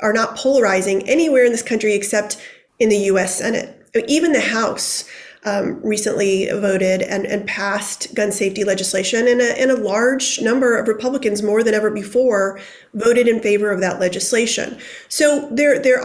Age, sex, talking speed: 30-49, female, 165 wpm